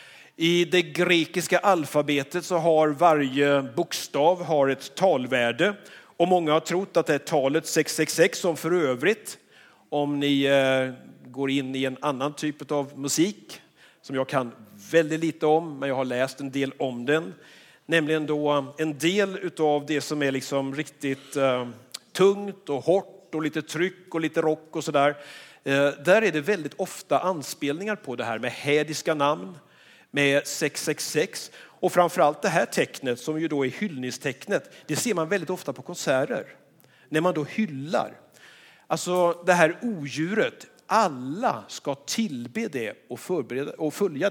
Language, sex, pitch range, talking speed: Swedish, male, 135-175 Hz, 155 wpm